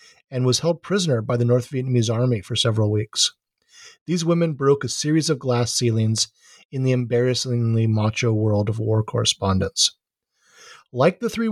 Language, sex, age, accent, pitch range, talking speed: English, male, 40-59, American, 120-150 Hz, 160 wpm